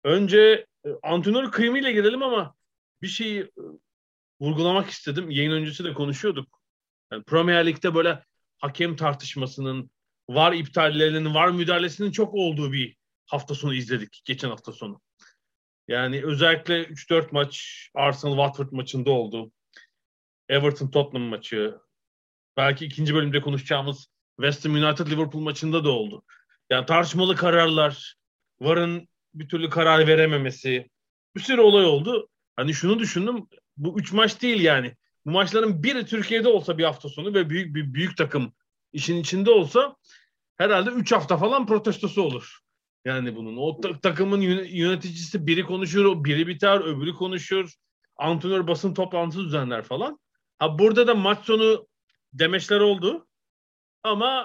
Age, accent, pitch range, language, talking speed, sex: 40-59, native, 145-200 Hz, Turkish, 135 wpm, male